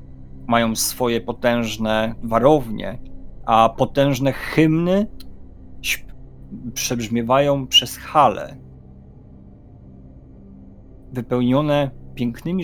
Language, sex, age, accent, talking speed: Polish, male, 40-59, native, 55 wpm